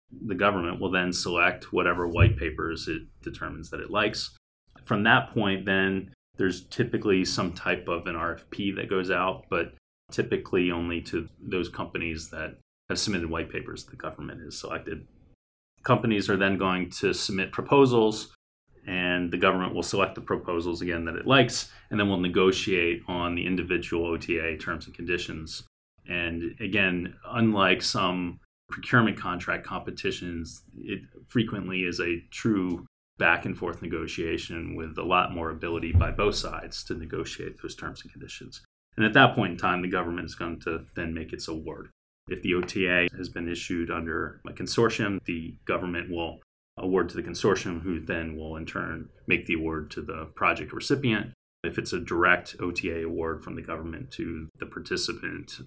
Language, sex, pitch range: English, male, 85-100 Hz